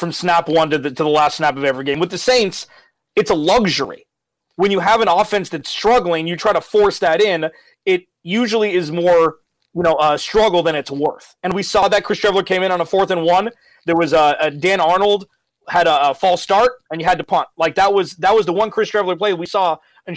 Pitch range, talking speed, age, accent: 160-200 Hz, 250 wpm, 30-49, American